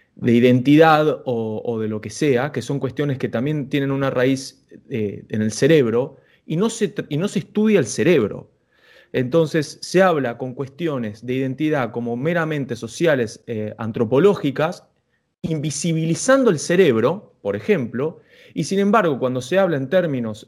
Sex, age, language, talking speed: male, 20-39, Spanish, 160 wpm